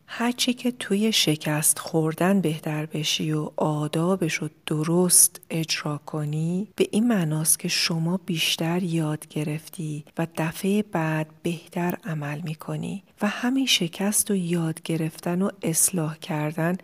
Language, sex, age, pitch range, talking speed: Persian, female, 40-59, 160-200 Hz, 130 wpm